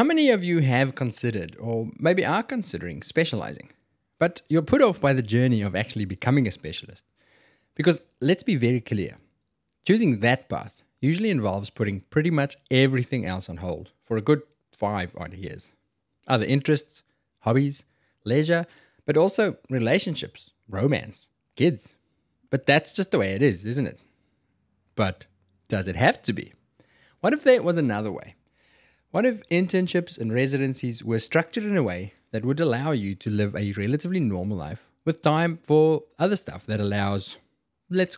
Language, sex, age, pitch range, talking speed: English, male, 20-39, 105-155 Hz, 160 wpm